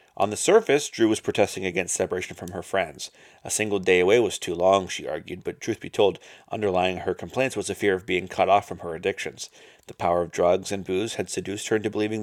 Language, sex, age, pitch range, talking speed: English, male, 30-49, 95-120 Hz, 235 wpm